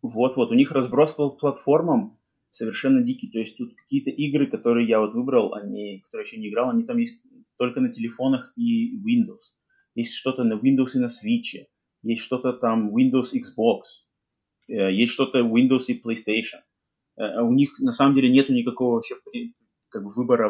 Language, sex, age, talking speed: Russian, male, 30-49, 175 wpm